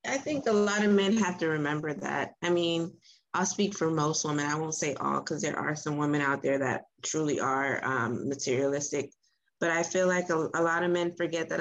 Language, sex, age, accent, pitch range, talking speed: English, female, 20-39, American, 150-185 Hz, 225 wpm